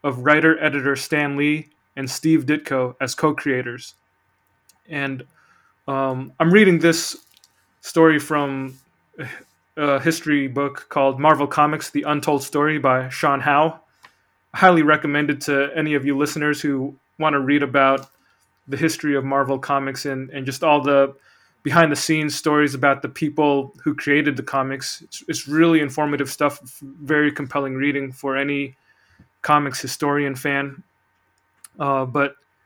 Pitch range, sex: 135-155 Hz, male